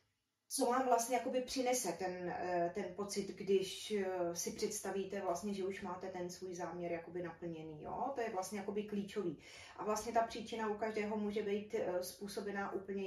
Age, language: 20-39, Czech